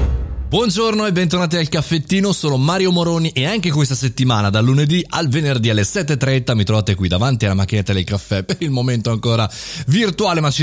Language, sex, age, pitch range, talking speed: Italian, male, 30-49, 95-145 Hz, 185 wpm